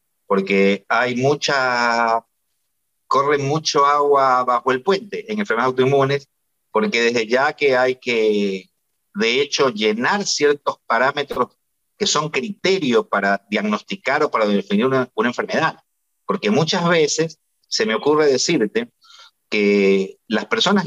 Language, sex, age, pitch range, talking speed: Spanish, male, 50-69, 130-195 Hz, 125 wpm